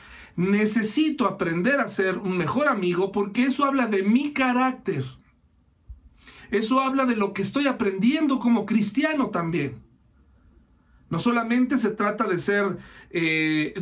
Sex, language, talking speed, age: male, Spanish, 130 wpm, 40-59